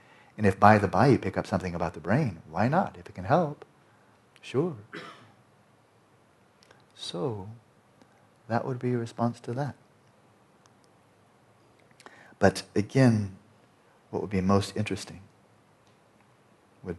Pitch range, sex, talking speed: 100-125 Hz, male, 125 wpm